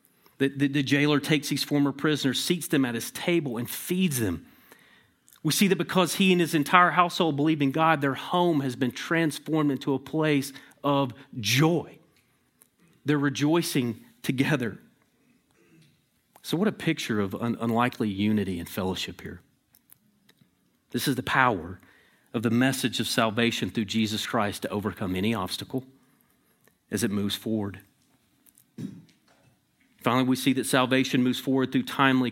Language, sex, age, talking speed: English, male, 40-59, 145 wpm